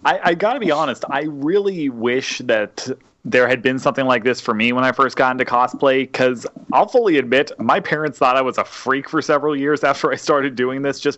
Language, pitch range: English, 120-160 Hz